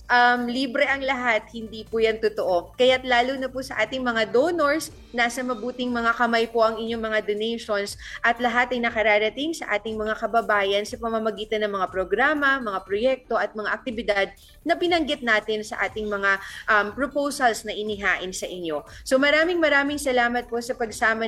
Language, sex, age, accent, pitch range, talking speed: Filipino, female, 20-39, native, 210-250 Hz, 175 wpm